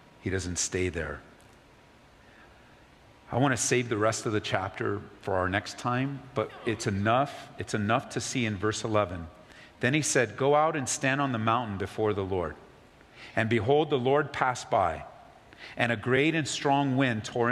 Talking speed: 180 wpm